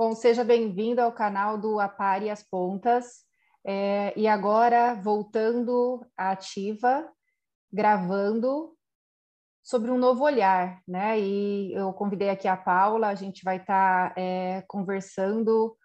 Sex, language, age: female, Portuguese, 20-39